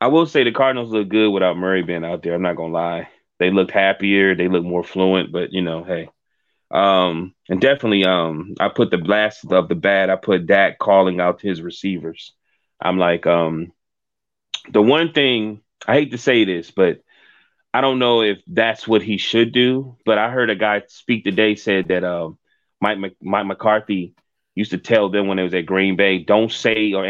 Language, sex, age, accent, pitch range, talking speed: English, male, 30-49, American, 95-115 Hz, 210 wpm